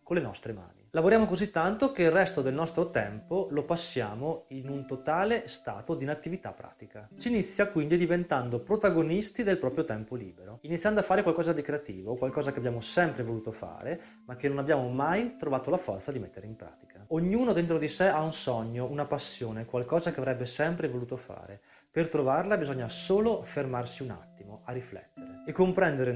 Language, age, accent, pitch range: Italian, 30-49, native, 120-170 Hz